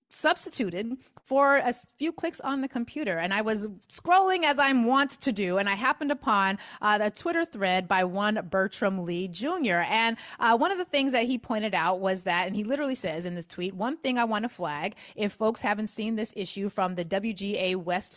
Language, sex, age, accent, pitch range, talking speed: English, female, 30-49, American, 195-265 Hz, 220 wpm